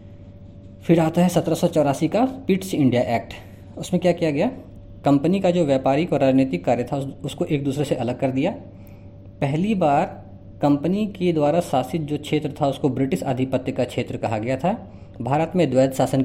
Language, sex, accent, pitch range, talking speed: Hindi, female, native, 110-170 Hz, 175 wpm